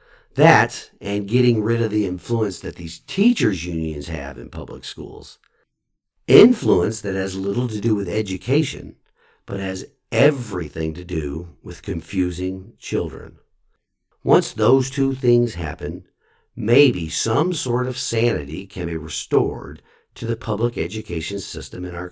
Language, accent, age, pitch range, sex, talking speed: English, American, 50-69, 90-125 Hz, male, 140 wpm